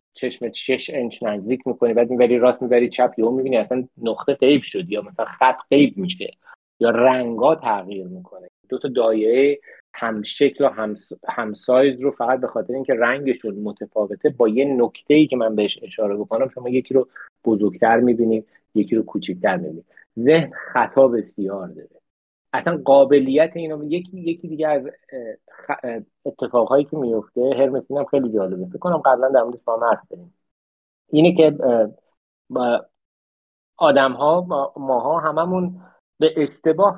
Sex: male